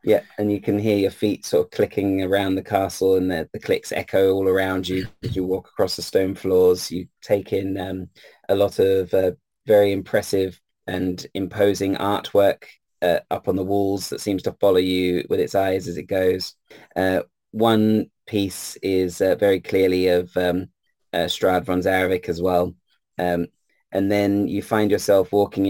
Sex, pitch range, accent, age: male, 90-100 Hz, British, 20-39